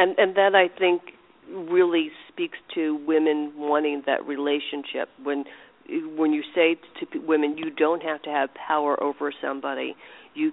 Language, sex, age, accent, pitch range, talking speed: English, female, 50-69, American, 150-245 Hz, 155 wpm